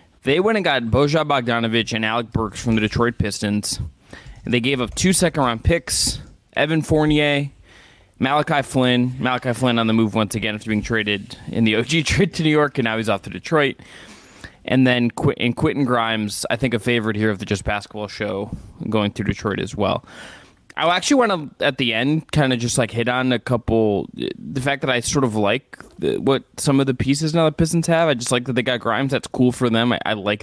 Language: English